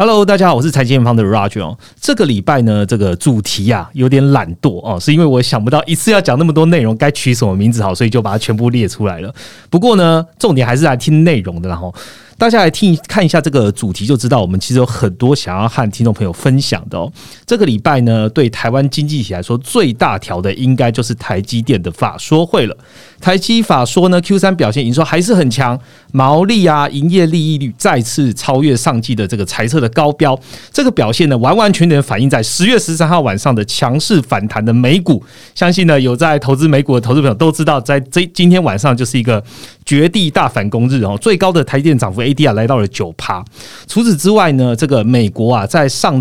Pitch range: 115-160 Hz